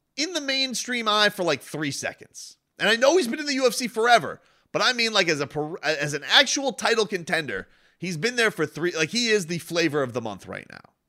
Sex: male